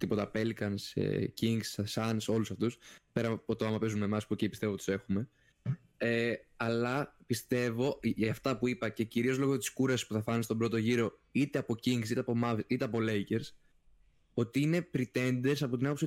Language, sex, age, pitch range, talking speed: Greek, male, 20-39, 110-140 Hz, 190 wpm